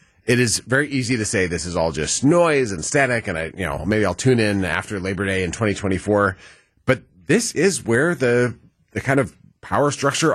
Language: English